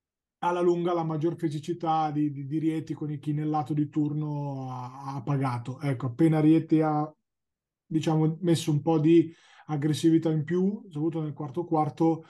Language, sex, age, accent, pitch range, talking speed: Italian, male, 30-49, native, 145-165 Hz, 165 wpm